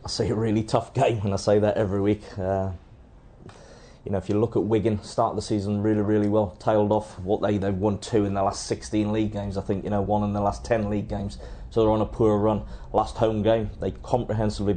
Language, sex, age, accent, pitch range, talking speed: English, male, 20-39, British, 100-110 Hz, 250 wpm